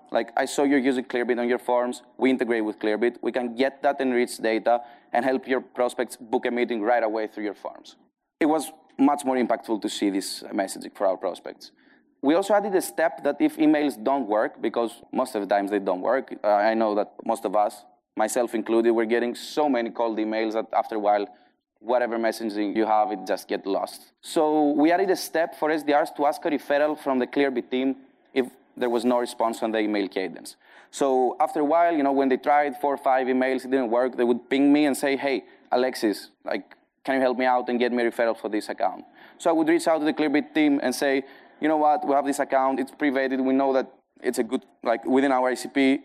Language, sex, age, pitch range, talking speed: English, male, 20-39, 120-145 Hz, 235 wpm